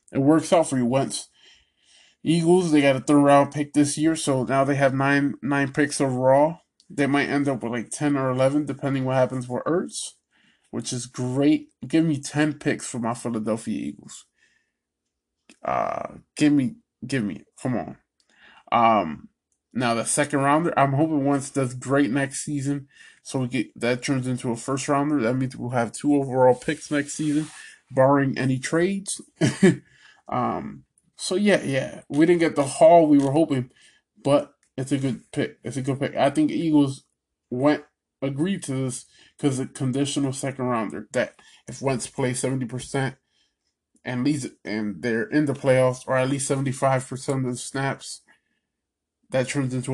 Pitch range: 130-150 Hz